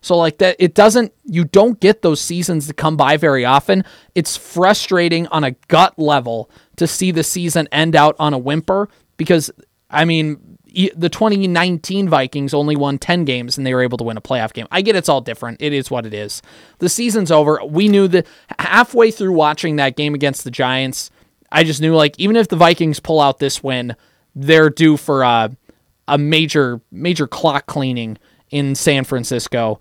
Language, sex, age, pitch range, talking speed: English, male, 20-39, 140-180 Hz, 195 wpm